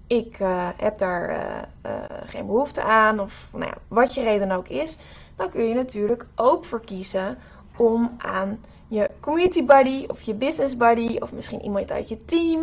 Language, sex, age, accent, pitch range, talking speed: Dutch, female, 20-39, Dutch, 210-255 Hz, 180 wpm